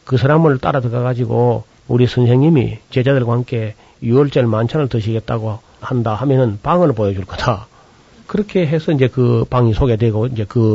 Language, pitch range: Korean, 115-135 Hz